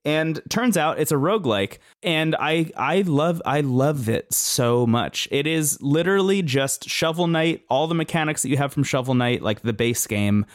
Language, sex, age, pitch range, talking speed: English, male, 20-39, 110-140 Hz, 195 wpm